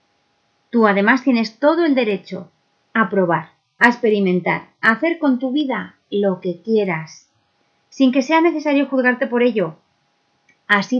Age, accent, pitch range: 30-49, Spanish, 180-245 Hz